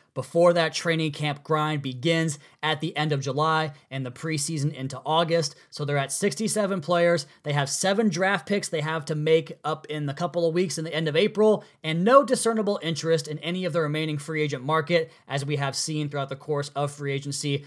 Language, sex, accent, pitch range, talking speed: English, male, American, 145-180 Hz, 215 wpm